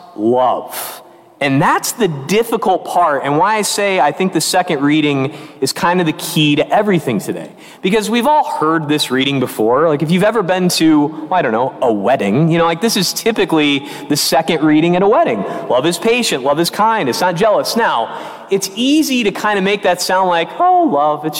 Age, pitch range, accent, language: 30-49, 150-225 Hz, American, English